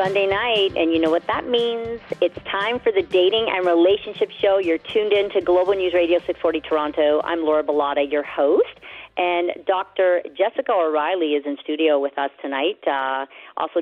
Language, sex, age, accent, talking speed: English, female, 40-59, American, 180 wpm